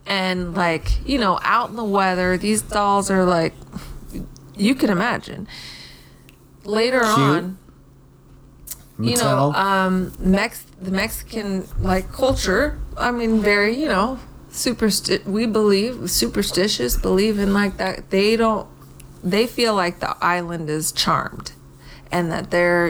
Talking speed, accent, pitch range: 130 wpm, American, 155-200 Hz